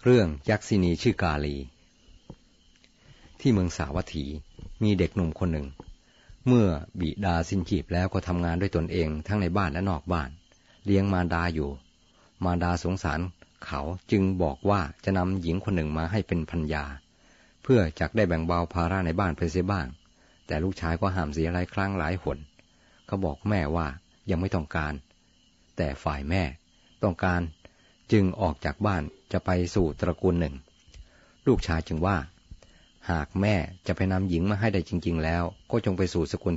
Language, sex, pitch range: Thai, male, 80-95 Hz